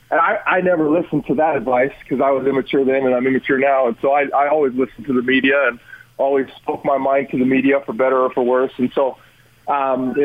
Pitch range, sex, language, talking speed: 130-155 Hz, male, English, 250 wpm